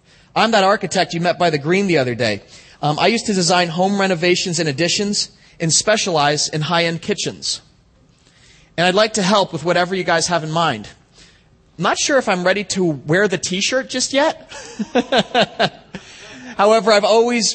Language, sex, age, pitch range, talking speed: English, male, 30-49, 155-215 Hz, 180 wpm